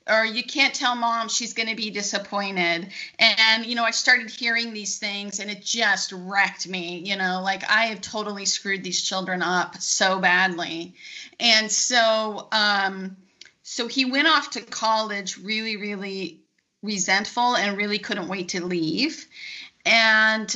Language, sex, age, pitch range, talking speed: English, female, 30-49, 195-230 Hz, 160 wpm